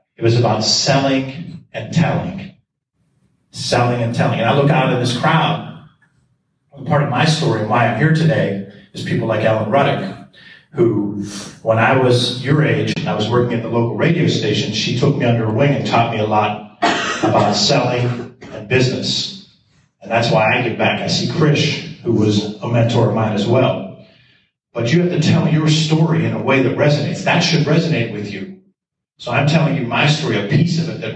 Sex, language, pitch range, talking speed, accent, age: male, English, 120-160 Hz, 205 wpm, American, 40-59